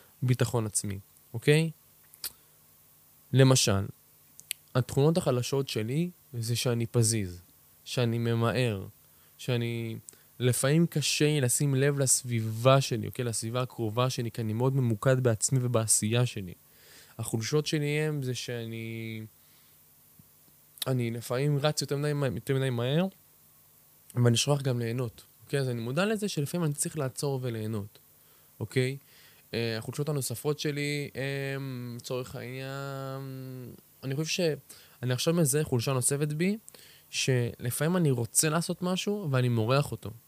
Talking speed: 120 wpm